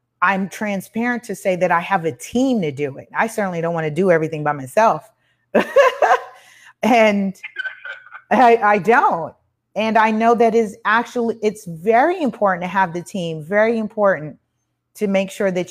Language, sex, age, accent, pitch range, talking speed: English, female, 30-49, American, 175-235 Hz, 170 wpm